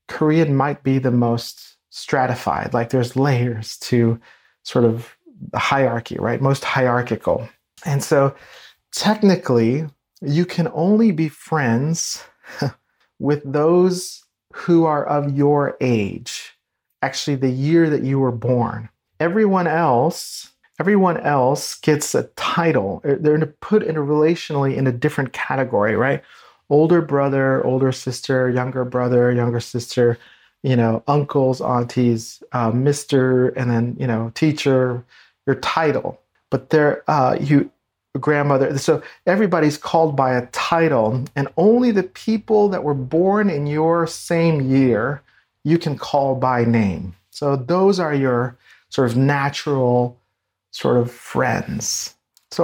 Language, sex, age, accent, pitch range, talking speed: English, male, 40-59, American, 125-160 Hz, 130 wpm